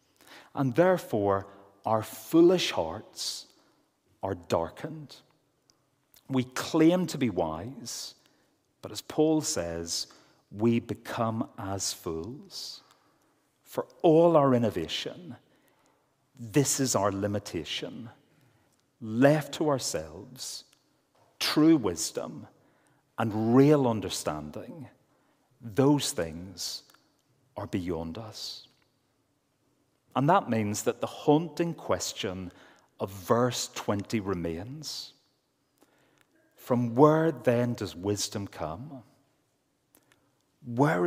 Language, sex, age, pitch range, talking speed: English, male, 40-59, 105-145 Hz, 85 wpm